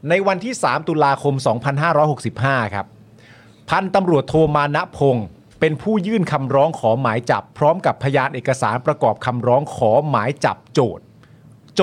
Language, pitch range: Thai, 115-160 Hz